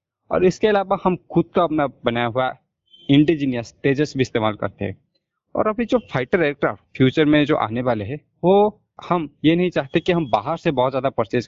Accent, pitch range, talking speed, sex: native, 125-160 Hz, 205 wpm, male